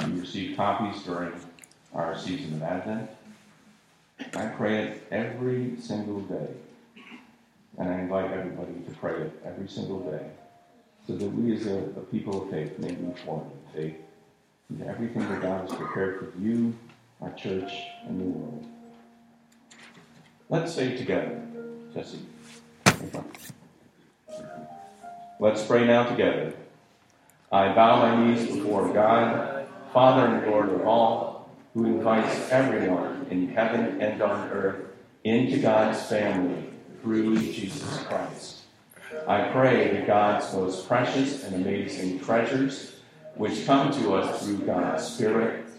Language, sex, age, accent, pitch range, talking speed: English, male, 50-69, American, 95-125 Hz, 130 wpm